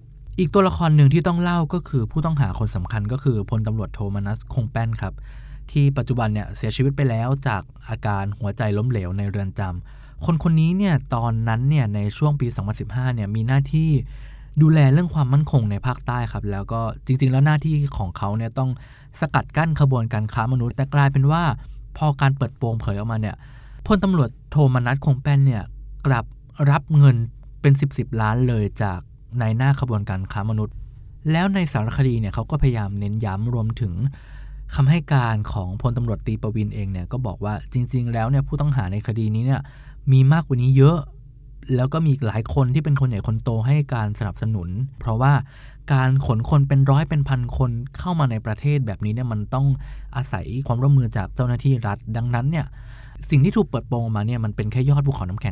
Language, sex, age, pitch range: Thai, male, 20-39, 110-140 Hz